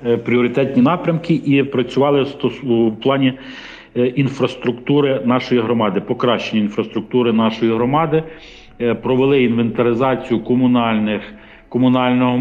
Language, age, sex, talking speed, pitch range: Ukrainian, 40-59, male, 75 wpm, 115-130 Hz